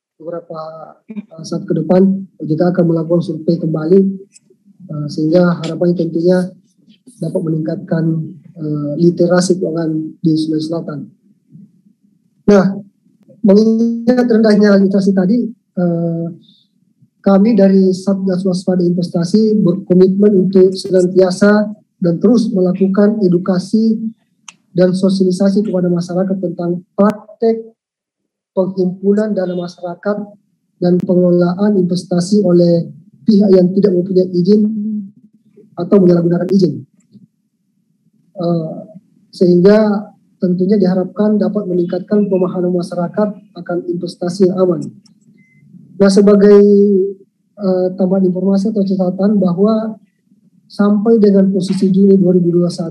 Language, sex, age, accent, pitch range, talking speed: Indonesian, male, 20-39, native, 180-205 Hz, 95 wpm